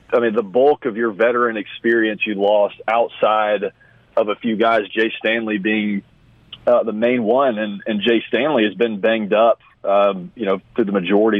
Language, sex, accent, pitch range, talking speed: English, male, American, 105-125 Hz, 190 wpm